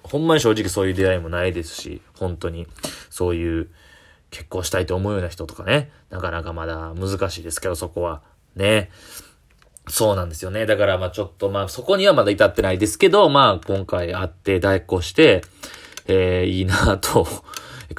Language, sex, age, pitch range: Japanese, male, 20-39, 85-100 Hz